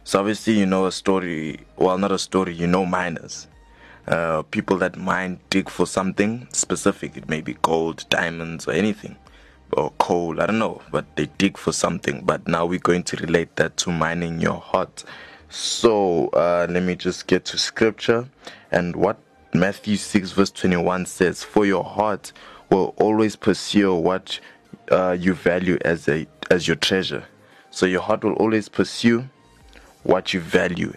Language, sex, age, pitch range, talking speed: English, male, 20-39, 85-105 Hz, 170 wpm